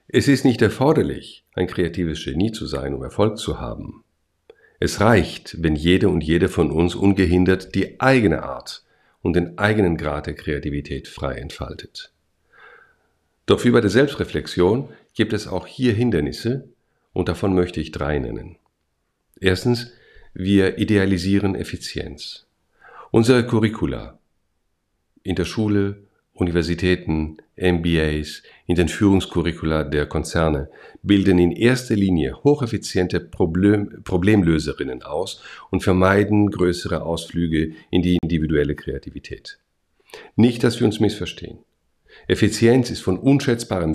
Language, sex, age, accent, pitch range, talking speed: German, male, 50-69, German, 80-105 Hz, 120 wpm